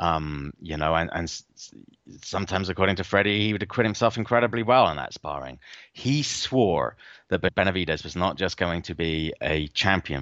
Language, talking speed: English, 175 wpm